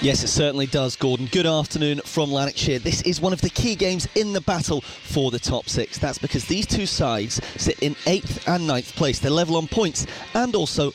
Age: 30-49